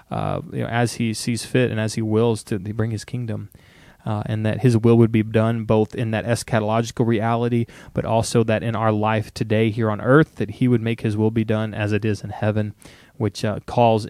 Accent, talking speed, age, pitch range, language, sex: American, 220 wpm, 20-39, 110-120 Hz, English, male